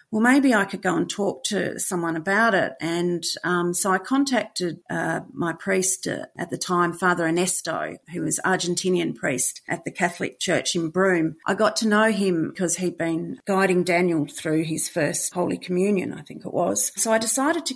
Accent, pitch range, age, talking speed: Australian, 175-205 Hz, 40-59, 195 wpm